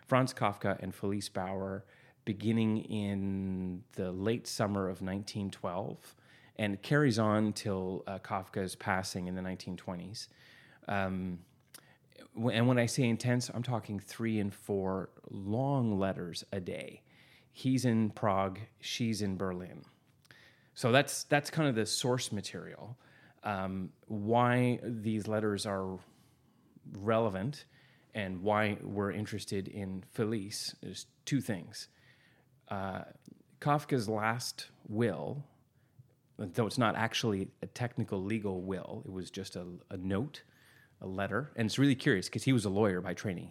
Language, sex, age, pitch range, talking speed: English, male, 30-49, 95-125 Hz, 135 wpm